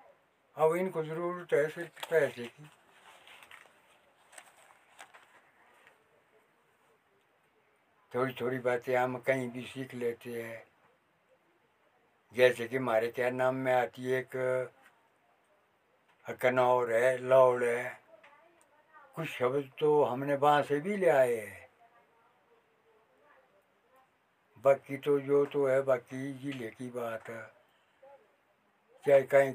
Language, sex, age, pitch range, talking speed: Hindi, male, 60-79, 120-175 Hz, 105 wpm